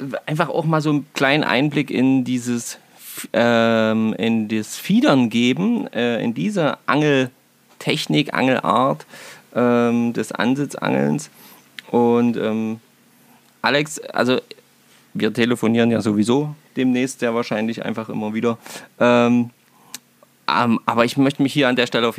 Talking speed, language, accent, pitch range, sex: 125 wpm, German, German, 115-145 Hz, male